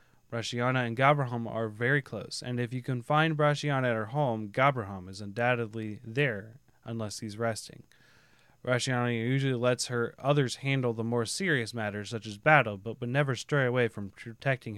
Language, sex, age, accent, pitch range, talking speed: English, male, 20-39, American, 115-145 Hz, 170 wpm